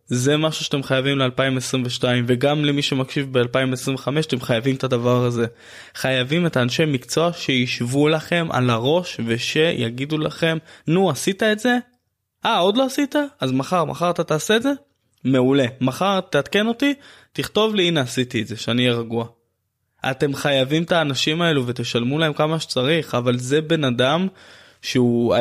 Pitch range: 120-170 Hz